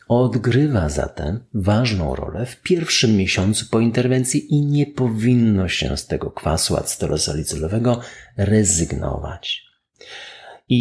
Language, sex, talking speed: Polish, male, 105 wpm